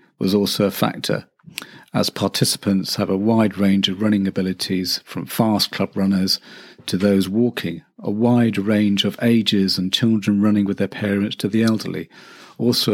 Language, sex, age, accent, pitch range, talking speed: English, male, 40-59, British, 95-115 Hz, 160 wpm